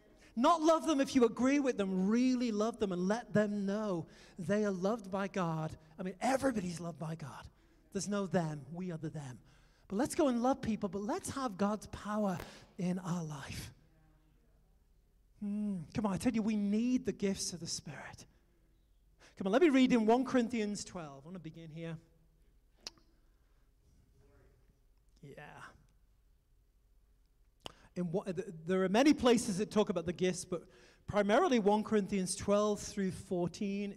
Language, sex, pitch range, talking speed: English, male, 185-240 Hz, 160 wpm